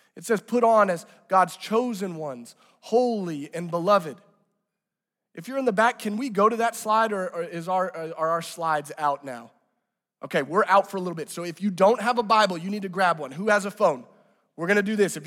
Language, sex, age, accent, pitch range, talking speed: English, male, 30-49, American, 190-230 Hz, 230 wpm